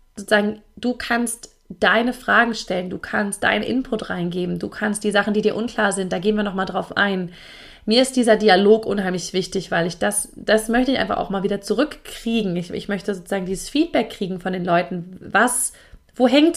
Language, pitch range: German, 190-230 Hz